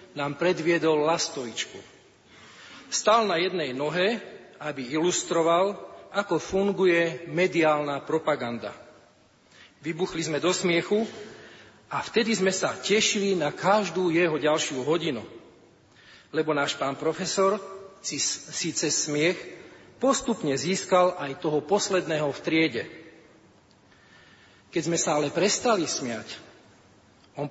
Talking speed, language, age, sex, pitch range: 105 wpm, Slovak, 40-59, male, 155-185 Hz